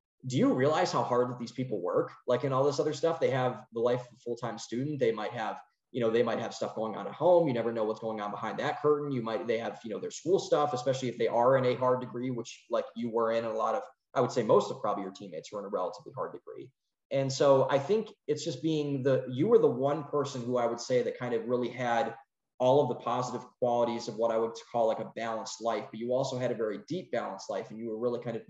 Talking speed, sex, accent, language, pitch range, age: 285 wpm, male, American, English, 115-135 Hz, 20-39